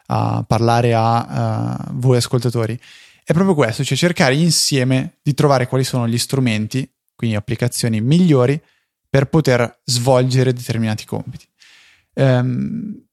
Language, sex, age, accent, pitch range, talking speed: Italian, male, 20-39, native, 115-140 Hz, 125 wpm